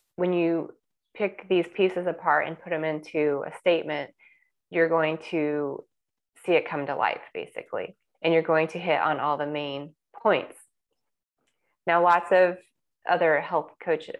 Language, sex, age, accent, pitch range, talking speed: English, female, 30-49, American, 155-180 Hz, 155 wpm